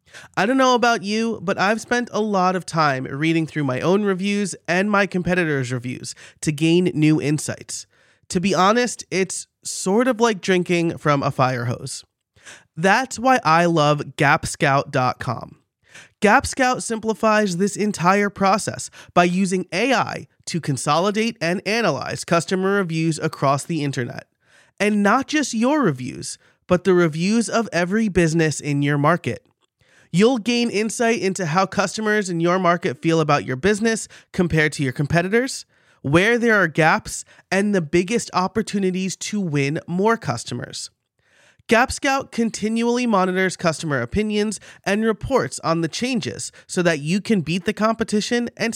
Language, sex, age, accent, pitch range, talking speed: English, male, 30-49, American, 160-220 Hz, 150 wpm